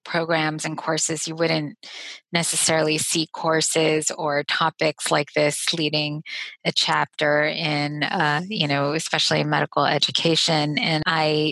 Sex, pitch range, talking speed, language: female, 150-170 Hz, 130 wpm, English